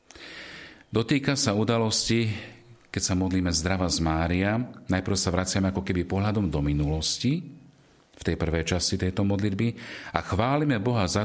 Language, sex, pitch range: Slovak, male, 85-100 Hz